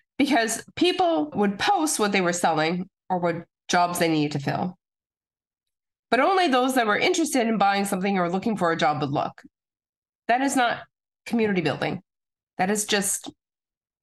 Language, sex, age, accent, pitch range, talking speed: English, female, 30-49, American, 185-245 Hz, 165 wpm